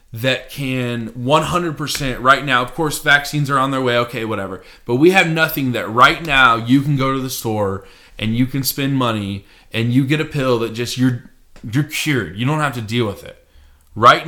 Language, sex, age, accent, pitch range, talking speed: English, male, 20-39, American, 115-140 Hz, 210 wpm